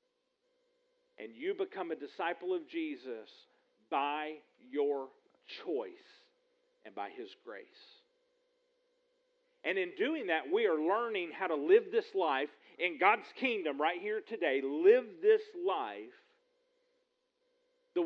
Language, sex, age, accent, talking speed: English, male, 50-69, American, 120 wpm